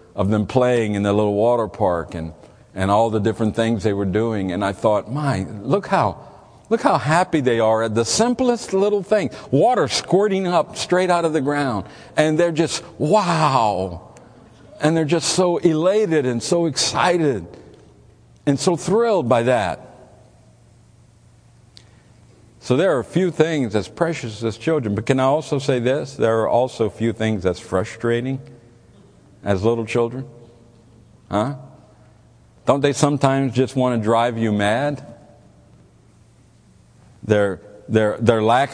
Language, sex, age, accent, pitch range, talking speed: English, male, 60-79, American, 110-155 Hz, 155 wpm